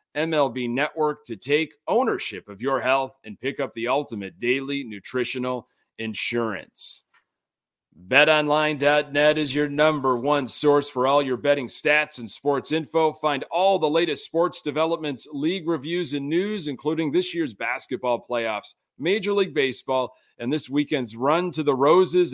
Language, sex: English, male